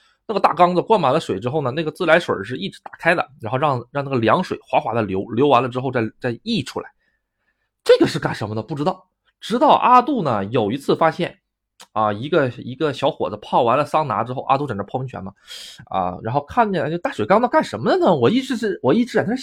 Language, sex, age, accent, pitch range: Chinese, male, 20-39, native, 120-185 Hz